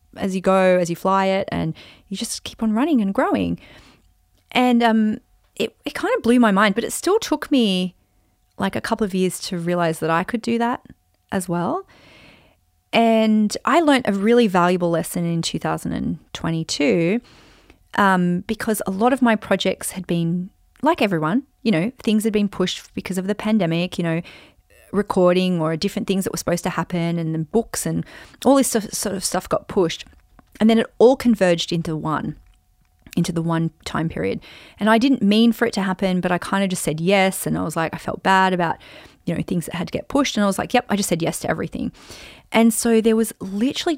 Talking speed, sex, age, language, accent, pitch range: 210 wpm, female, 30-49, English, Australian, 175-230 Hz